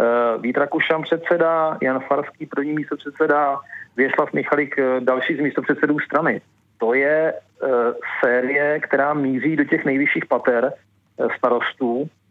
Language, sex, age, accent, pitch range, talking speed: Czech, male, 40-59, native, 135-155 Hz, 135 wpm